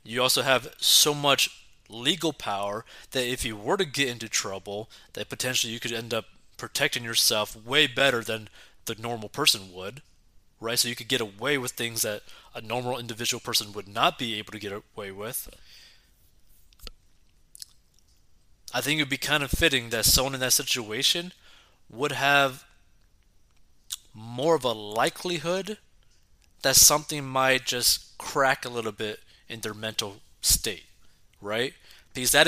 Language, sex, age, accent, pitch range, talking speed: English, male, 20-39, American, 105-130 Hz, 155 wpm